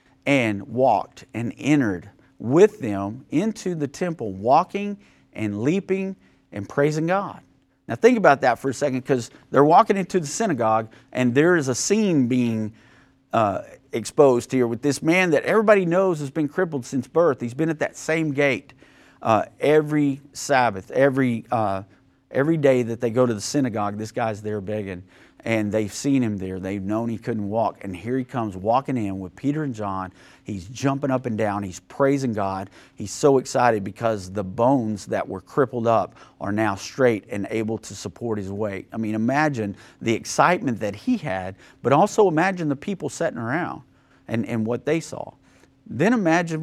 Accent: American